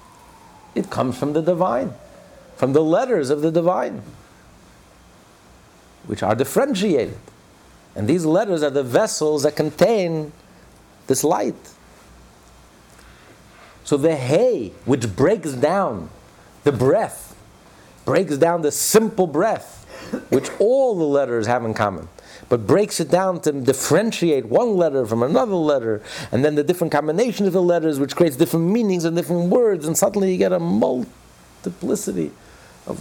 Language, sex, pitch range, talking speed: English, male, 130-190 Hz, 140 wpm